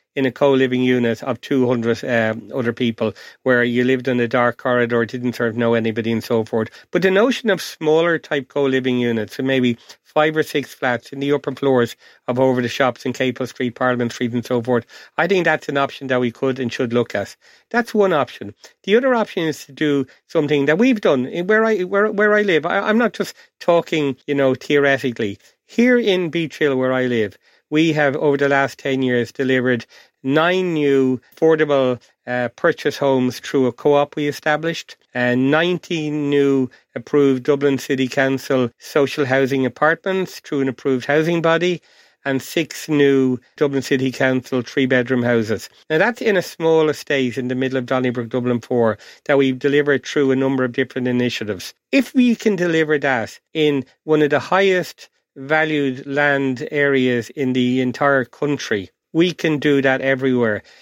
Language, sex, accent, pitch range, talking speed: English, male, Irish, 125-155 Hz, 185 wpm